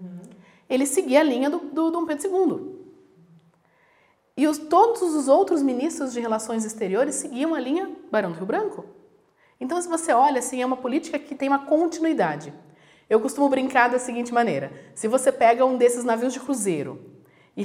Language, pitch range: Portuguese, 180-260 Hz